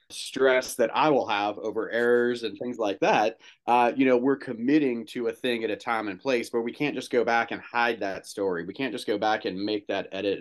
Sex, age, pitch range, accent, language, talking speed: male, 30-49, 105-130 Hz, American, English, 250 wpm